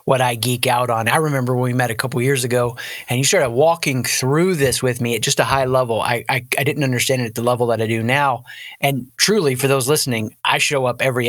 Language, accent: English, American